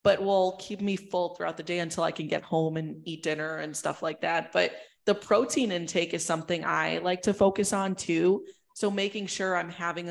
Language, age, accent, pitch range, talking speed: English, 20-39, American, 170-205 Hz, 220 wpm